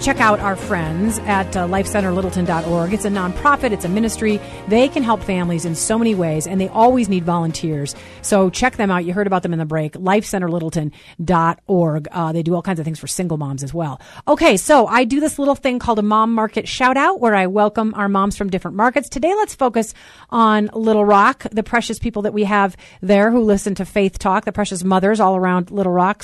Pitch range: 185-225 Hz